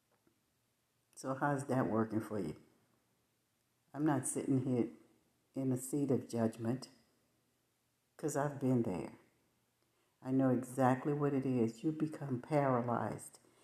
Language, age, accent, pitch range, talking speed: English, 60-79, American, 120-140 Hz, 125 wpm